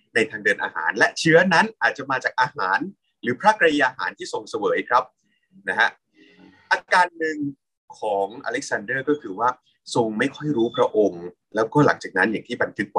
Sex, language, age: male, Thai, 20-39